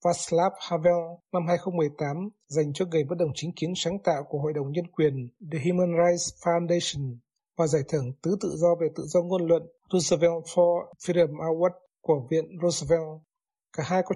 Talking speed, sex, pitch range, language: 180 wpm, male, 155-185 Hz, Vietnamese